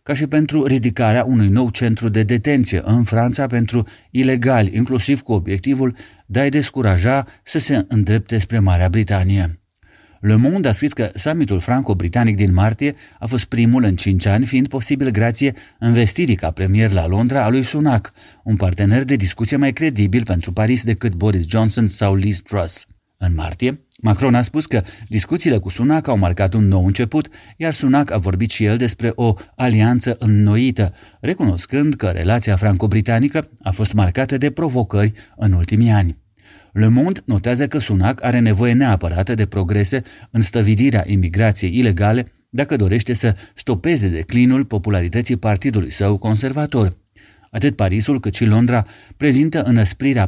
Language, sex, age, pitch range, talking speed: Romanian, male, 30-49, 100-125 Hz, 160 wpm